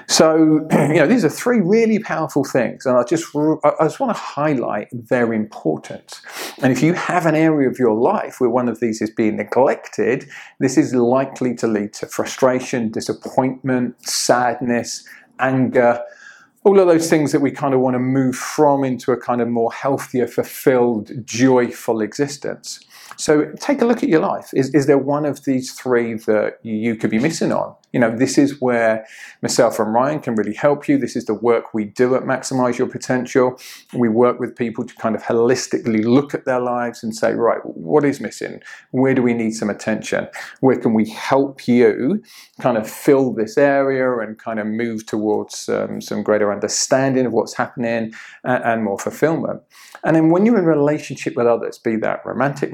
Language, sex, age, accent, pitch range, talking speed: English, male, 40-59, British, 115-140 Hz, 195 wpm